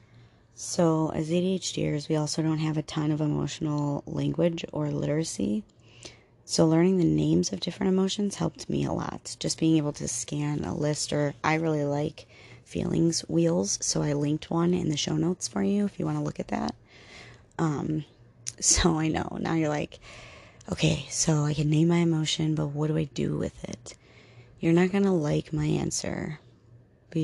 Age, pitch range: 30-49, 140-165 Hz